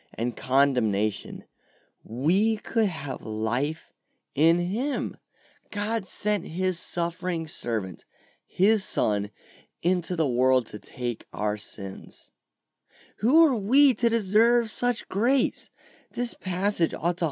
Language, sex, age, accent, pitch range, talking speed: English, male, 20-39, American, 130-210 Hz, 115 wpm